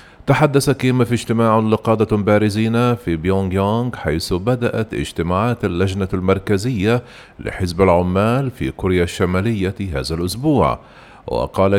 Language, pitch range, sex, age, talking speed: Arabic, 95-125 Hz, male, 40-59, 110 wpm